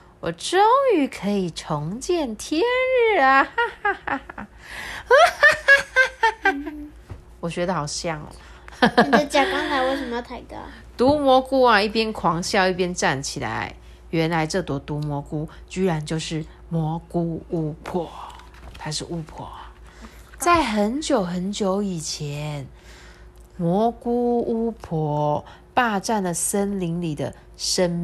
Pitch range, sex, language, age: 155-225 Hz, female, Chinese, 30-49